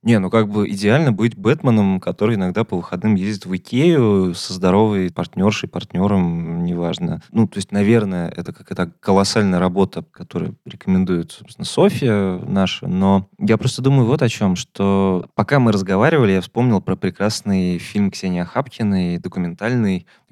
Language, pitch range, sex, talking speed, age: Russian, 95-120 Hz, male, 155 wpm, 20-39